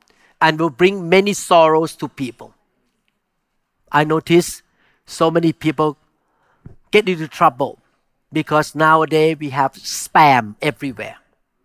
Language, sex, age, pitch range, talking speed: English, male, 50-69, 145-185 Hz, 110 wpm